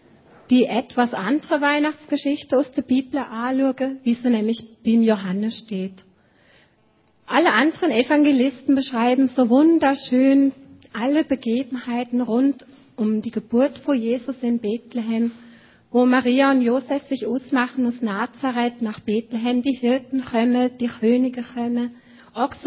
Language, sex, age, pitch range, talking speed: German, female, 30-49, 230-270 Hz, 125 wpm